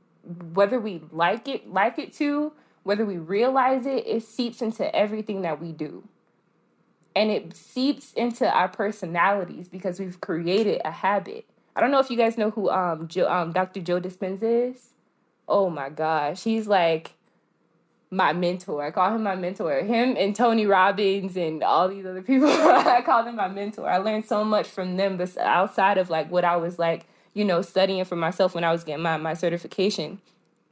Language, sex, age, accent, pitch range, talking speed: English, female, 20-39, American, 175-230 Hz, 185 wpm